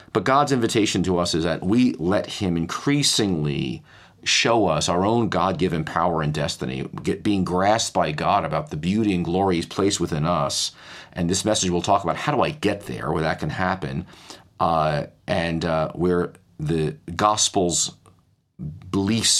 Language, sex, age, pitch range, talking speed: English, male, 40-59, 85-105 Hz, 170 wpm